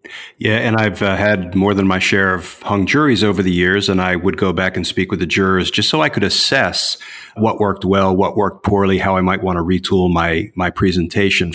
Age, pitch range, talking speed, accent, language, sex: 40-59, 95-110 Hz, 235 wpm, American, English, male